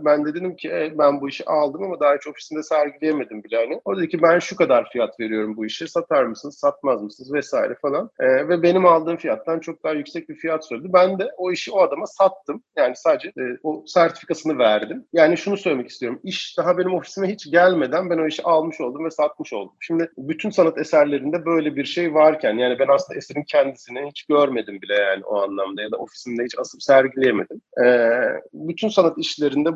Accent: native